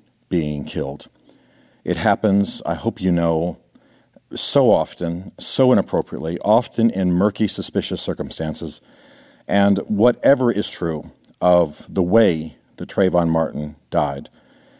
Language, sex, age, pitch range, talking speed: English, male, 50-69, 85-105 Hz, 115 wpm